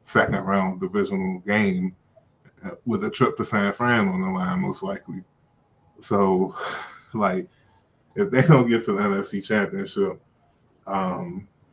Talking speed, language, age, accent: 135 wpm, English, 20-39, American